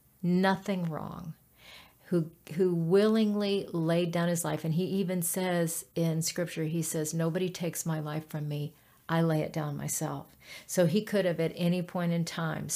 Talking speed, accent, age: 175 wpm, American, 50-69